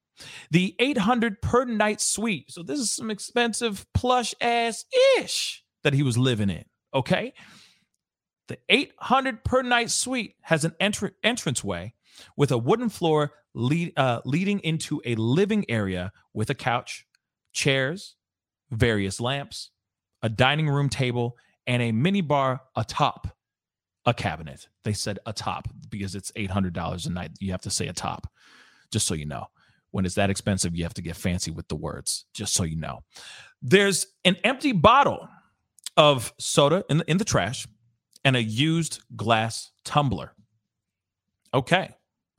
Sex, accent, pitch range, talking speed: male, American, 105-170 Hz, 155 wpm